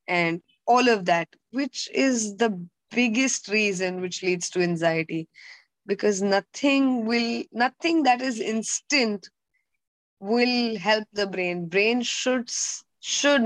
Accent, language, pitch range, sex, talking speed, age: Indian, English, 190-240 Hz, female, 120 wpm, 20-39